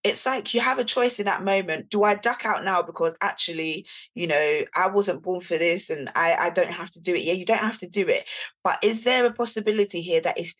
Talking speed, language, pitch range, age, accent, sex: 260 wpm, English, 175-215 Hz, 20-39, British, female